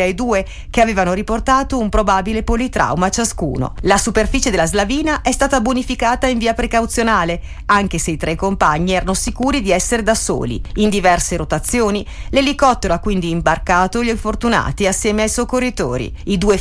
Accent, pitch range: native, 175-235 Hz